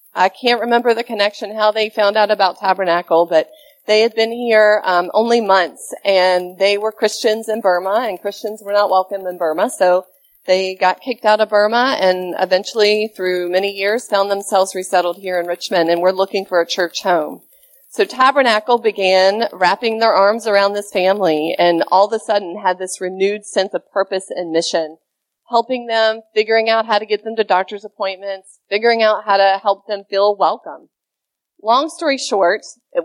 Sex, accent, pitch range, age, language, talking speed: female, American, 185-220 Hz, 40-59, English, 185 wpm